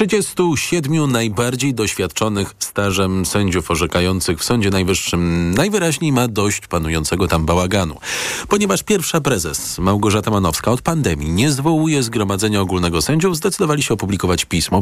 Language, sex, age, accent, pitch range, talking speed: Polish, male, 40-59, native, 90-135 Hz, 130 wpm